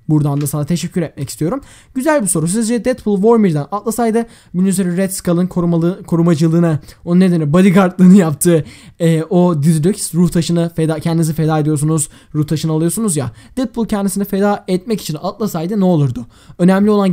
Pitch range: 160-210 Hz